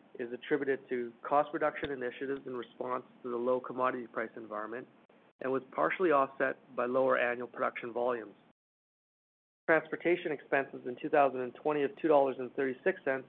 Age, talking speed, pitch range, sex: 40-59, 120 wpm, 125-150 Hz, male